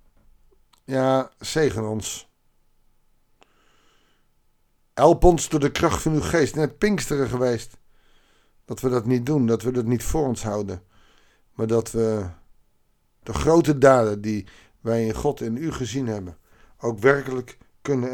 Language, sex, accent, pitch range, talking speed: Dutch, male, Dutch, 110-145 Hz, 140 wpm